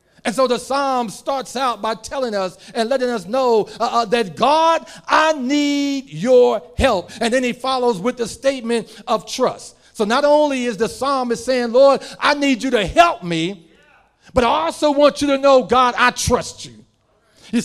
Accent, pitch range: American, 195-265 Hz